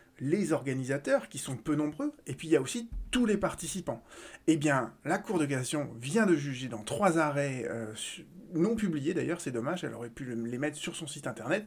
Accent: French